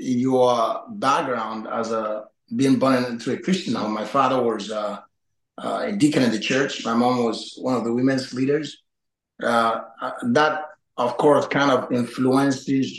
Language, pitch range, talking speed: English, 115-145 Hz, 155 wpm